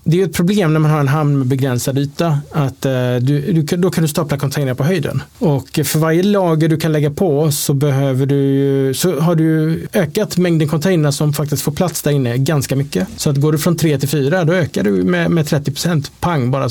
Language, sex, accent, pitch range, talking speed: Swedish, male, Norwegian, 135-160 Hz, 225 wpm